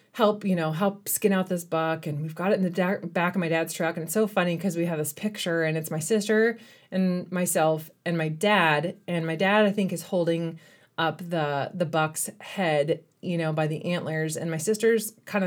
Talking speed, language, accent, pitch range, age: 225 wpm, English, American, 160-190 Hz, 30-49